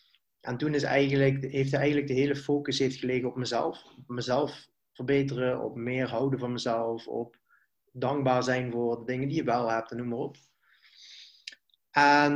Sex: male